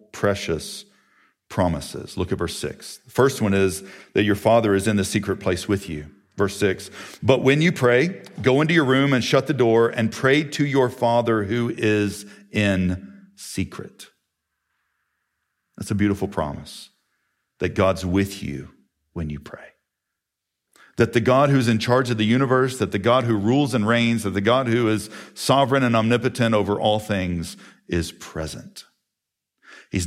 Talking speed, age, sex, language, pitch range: 170 wpm, 50-69, male, English, 105-160 Hz